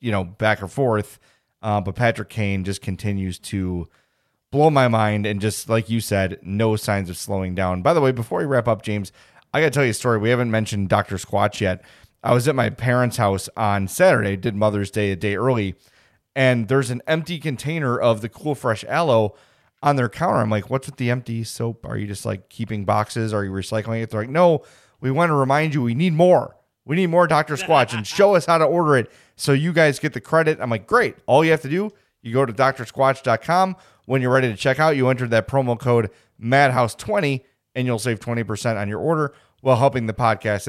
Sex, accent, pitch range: male, American, 110-145 Hz